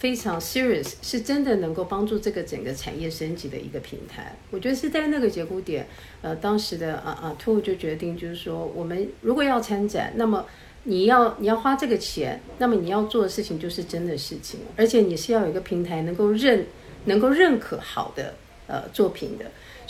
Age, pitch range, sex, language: 50-69, 170-225 Hz, female, Chinese